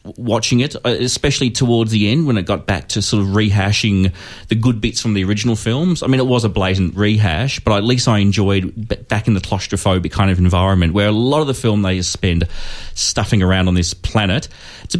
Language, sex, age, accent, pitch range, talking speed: English, male, 30-49, Australian, 100-120 Hz, 215 wpm